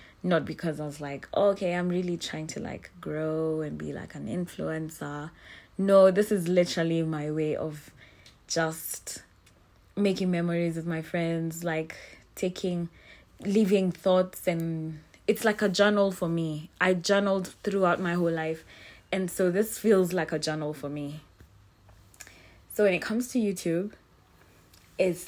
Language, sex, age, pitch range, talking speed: English, female, 20-39, 150-185 Hz, 150 wpm